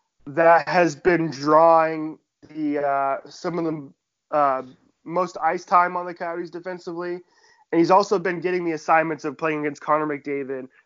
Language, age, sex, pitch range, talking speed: English, 20-39, male, 150-180 Hz, 160 wpm